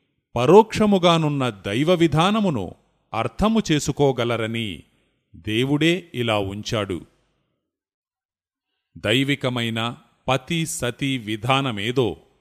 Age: 30-49